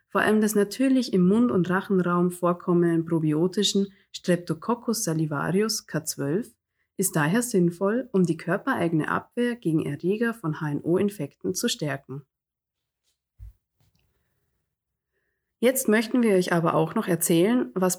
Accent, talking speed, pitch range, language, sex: German, 115 wpm, 165-215 Hz, German, female